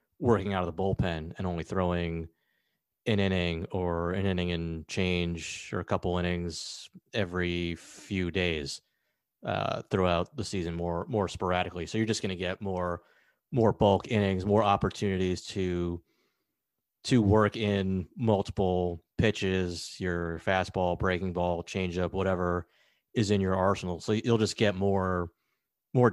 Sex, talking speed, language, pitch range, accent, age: male, 145 wpm, English, 90-100 Hz, American, 30-49